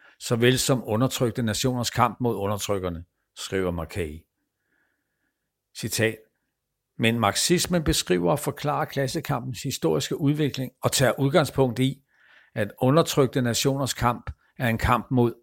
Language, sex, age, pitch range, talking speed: Danish, male, 60-79, 105-130 Hz, 115 wpm